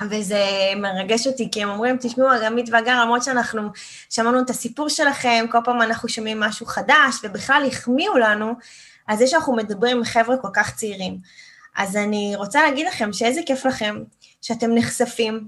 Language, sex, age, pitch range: Hebrew, female, 20-39, 200-245 Hz